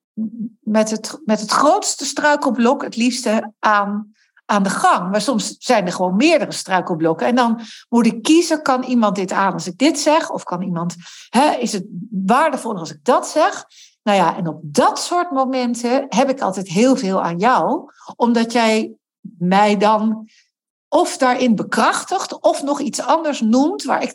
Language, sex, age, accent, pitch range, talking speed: Dutch, female, 60-79, Dutch, 200-265 Hz, 175 wpm